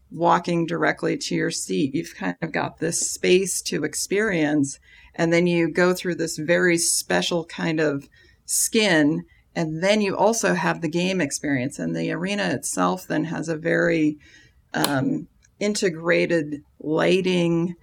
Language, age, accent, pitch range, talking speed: English, 40-59, American, 150-180 Hz, 145 wpm